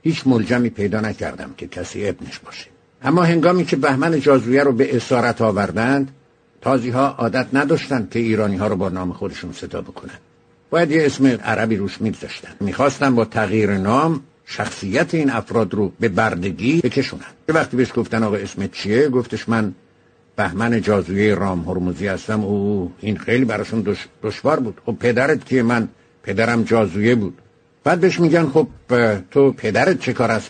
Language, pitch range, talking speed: English, 110-140 Hz, 155 wpm